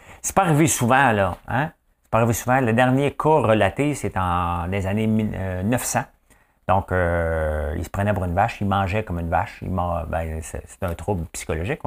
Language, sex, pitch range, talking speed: English, male, 95-125 Hz, 200 wpm